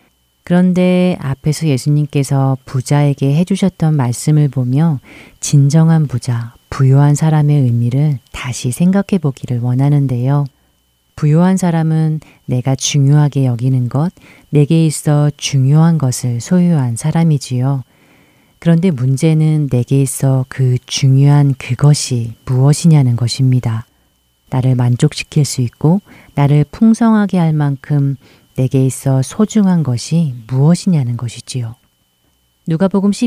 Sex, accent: female, native